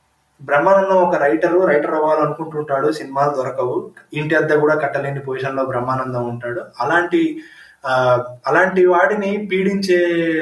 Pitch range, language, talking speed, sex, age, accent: 135-175 Hz, Telugu, 105 wpm, male, 20-39, native